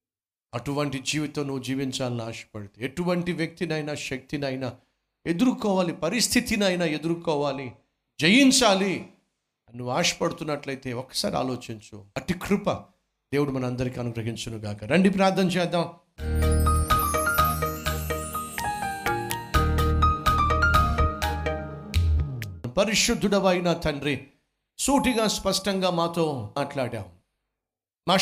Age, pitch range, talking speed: 50-69, 130-205 Hz, 70 wpm